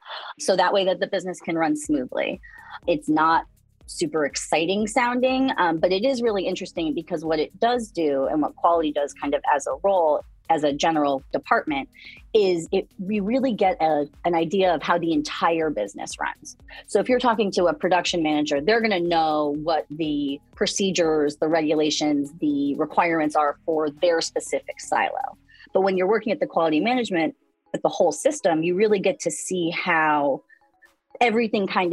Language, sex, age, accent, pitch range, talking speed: English, female, 30-49, American, 155-235 Hz, 180 wpm